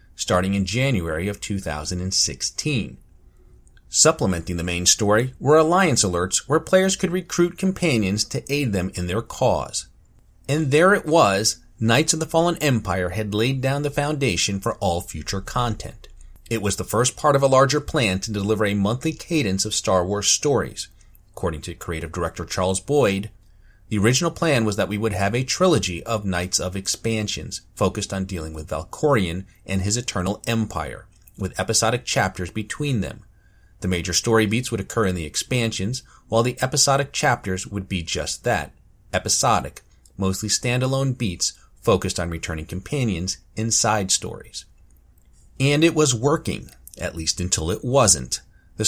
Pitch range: 90-130 Hz